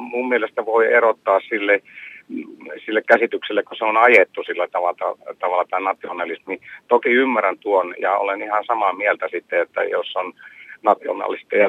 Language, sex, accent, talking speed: Finnish, male, native, 155 wpm